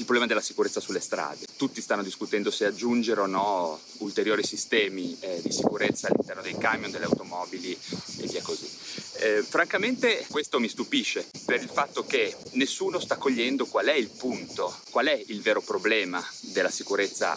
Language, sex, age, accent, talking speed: Italian, male, 30-49, native, 170 wpm